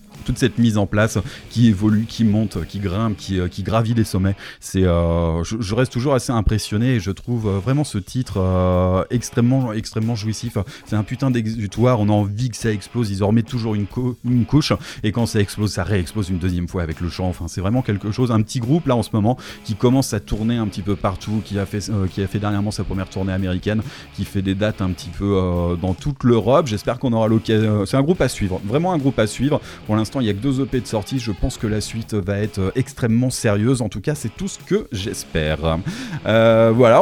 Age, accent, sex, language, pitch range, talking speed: 30-49, French, male, French, 100-125 Hz, 250 wpm